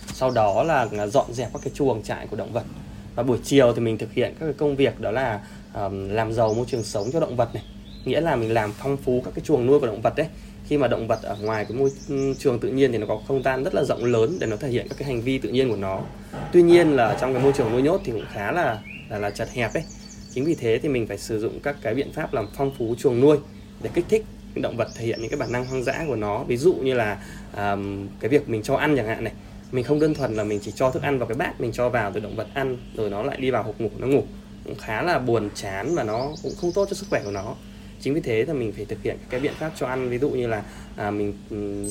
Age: 20-39